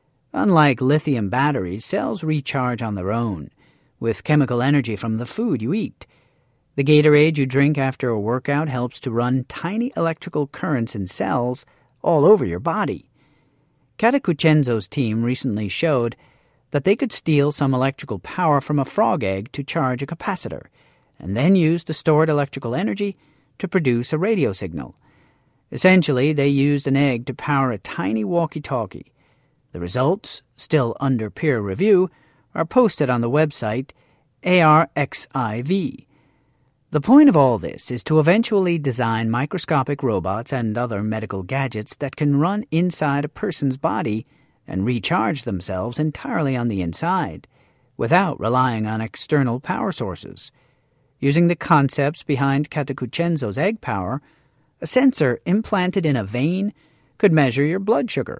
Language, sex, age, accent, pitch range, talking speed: English, male, 40-59, American, 125-155 Hz, 145 wpm